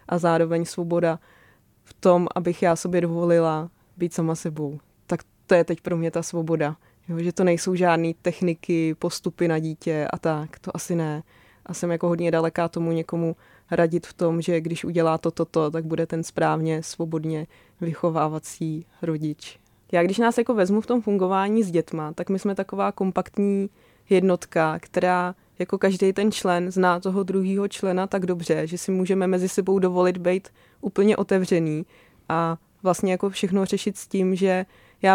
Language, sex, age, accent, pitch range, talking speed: Czech, female, 20-39, native, 165-185 Hz, 170 wpm